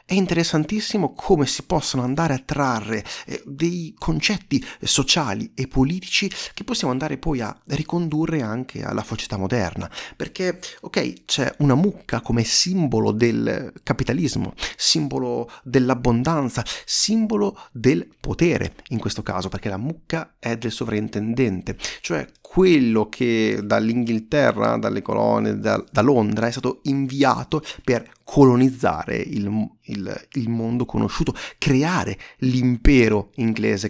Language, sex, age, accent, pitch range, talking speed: Italian, male, 30-49, native, 110-165 Hz, 120 wpm